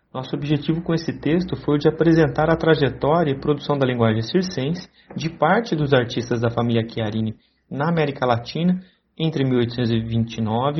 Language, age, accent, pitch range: Portuguese, 40-59, Brazilian, 130-165 Hz